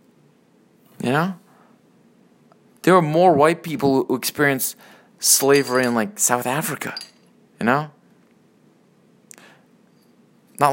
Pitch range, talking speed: 120-175 Hz, 95 wpm